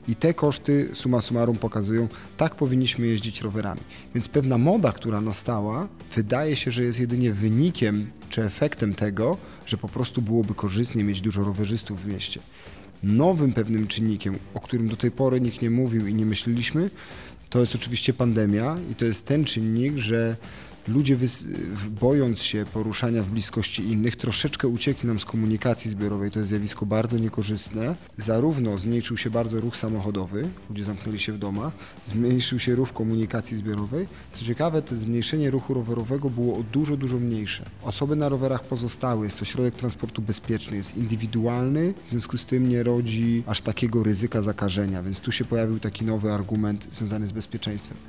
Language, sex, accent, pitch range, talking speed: Polish, male, native, 105-125 Hz, 165 wpm